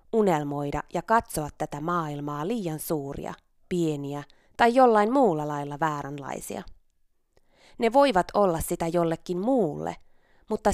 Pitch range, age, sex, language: 150-215 Hz, 20-39, female, Finnish